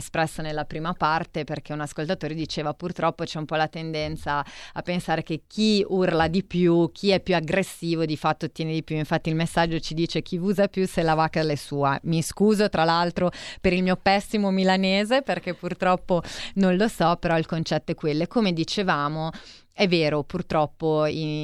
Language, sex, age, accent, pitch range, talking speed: Italian, female, 30-49, native, 150-180 Hz, 195 wpm